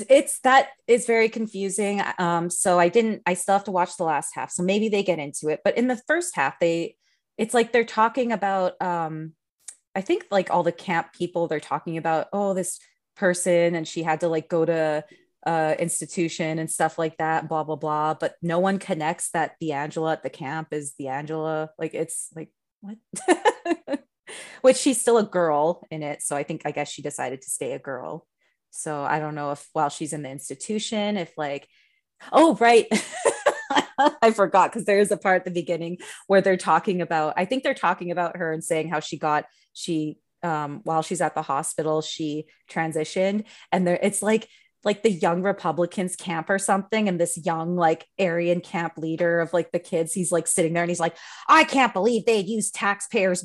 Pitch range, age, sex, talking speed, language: 160-210 Hz, 30-49, female, 205 wpm, English